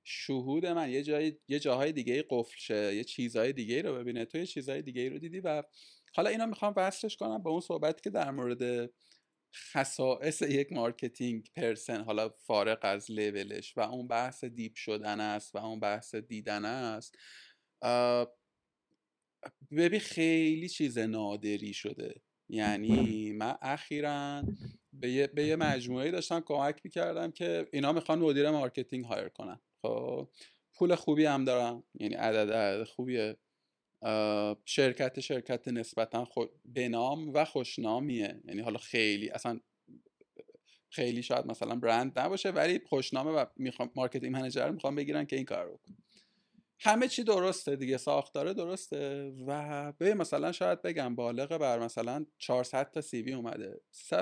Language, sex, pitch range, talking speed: Persian, male, 115-155 Hz, 140 wpm